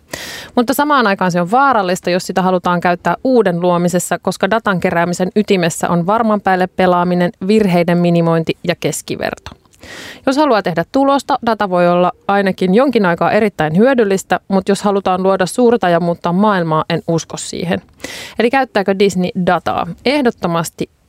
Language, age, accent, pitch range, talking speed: Finnish, 30-49, native, 175-210 Hz, 145 wpm